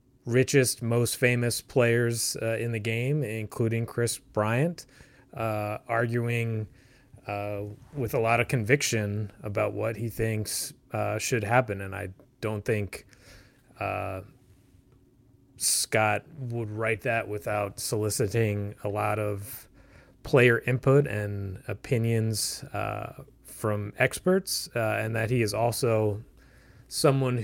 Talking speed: 120 wpm